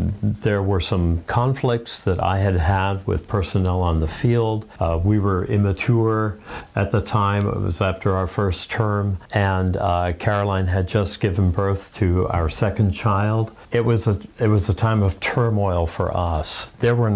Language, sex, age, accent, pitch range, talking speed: English, male, 50-69, American, 95-110 Hz, 175 wpm